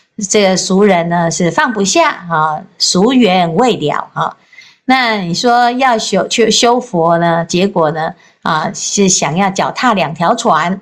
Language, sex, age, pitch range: Chinese, female, 50-69, 175-240 Hz